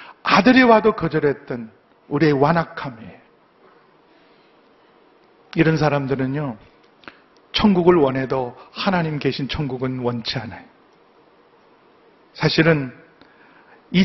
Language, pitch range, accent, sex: Korean, 140-205 Hz, native, male